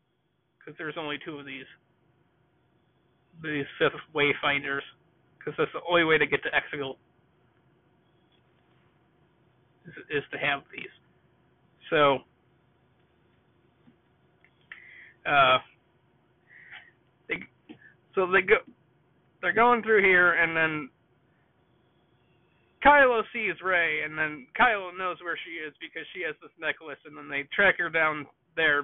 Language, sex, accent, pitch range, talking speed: English, male, American, 150-195 Hz, 115 wpm